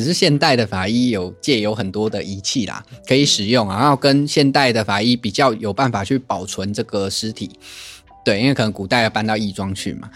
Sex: male